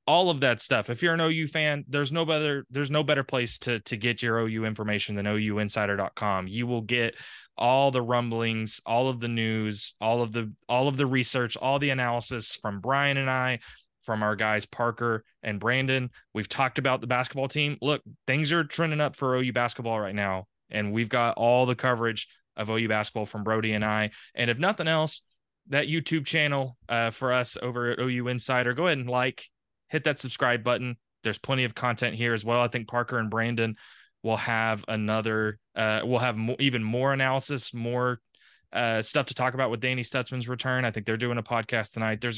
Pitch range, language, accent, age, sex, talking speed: 110-135 Hz, English, American, 20-39, male, 205 wpm